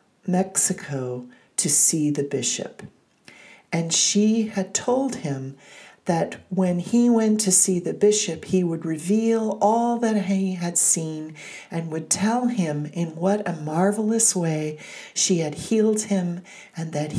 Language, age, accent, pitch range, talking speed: English, 40-59, American, 155-200 Hz, 145 wpm